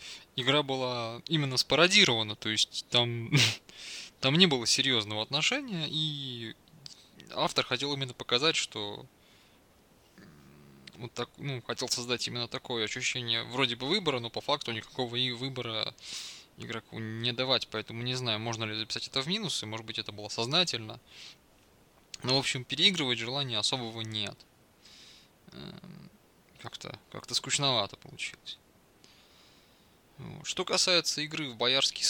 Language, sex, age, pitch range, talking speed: Russian, male, 20-39, 110-150 Hz, 125 wpm